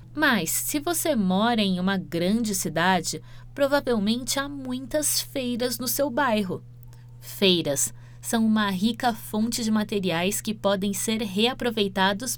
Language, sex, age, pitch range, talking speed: Portuguese, female, 20-39, 165-240 Hz, 125 wpm